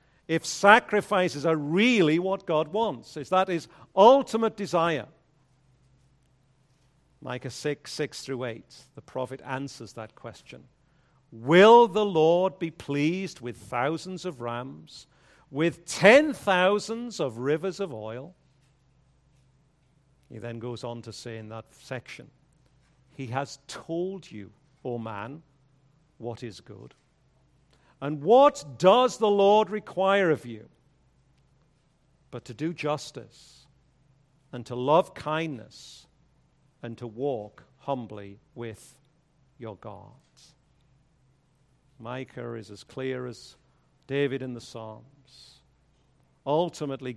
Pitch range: 125-155 Hz